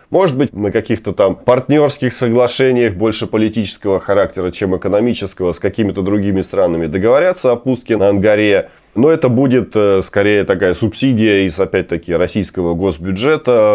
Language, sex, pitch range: Russian, male, 95-120 Hz